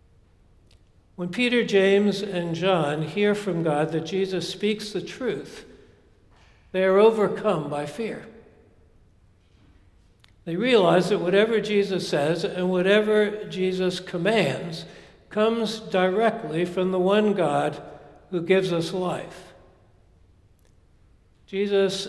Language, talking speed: English, 105 wpm